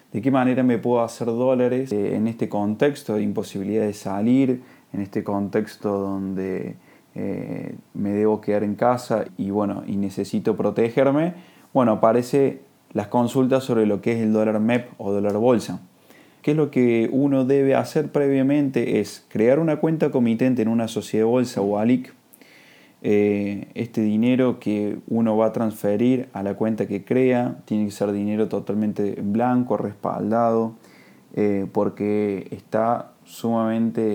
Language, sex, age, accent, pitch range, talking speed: Spanish, male, 20-39, Argentinian, 105-125 Hz, 155 wpm